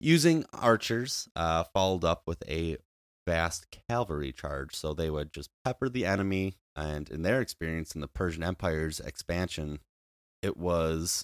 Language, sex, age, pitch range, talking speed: English, male, 30-49, 75-95 Hz, 150 wpm